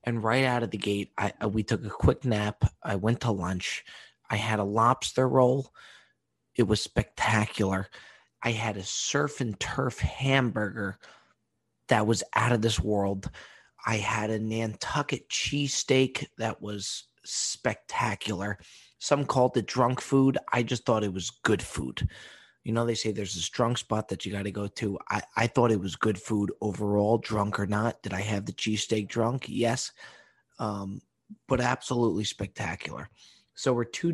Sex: male